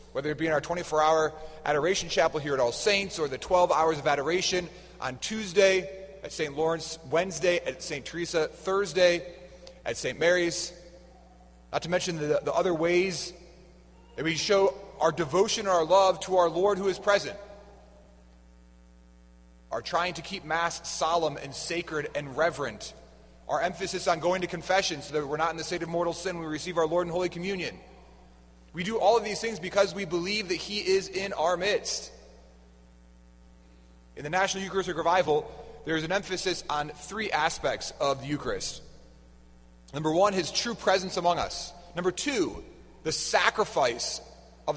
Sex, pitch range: male, 150-190 Hz